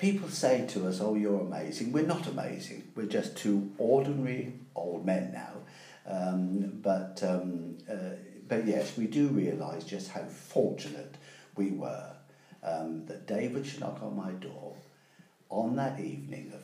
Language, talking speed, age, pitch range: English, 155 wpm, 50-69, 90-110 Hz